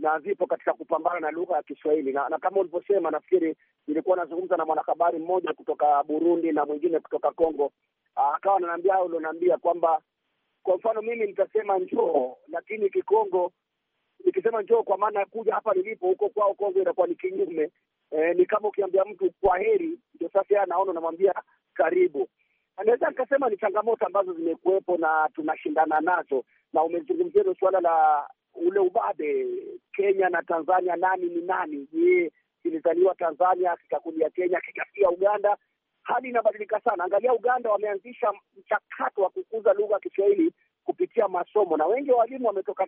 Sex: male